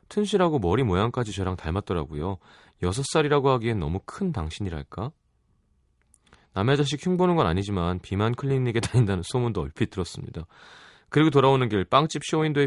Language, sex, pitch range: Korean, male, 90-130 Hz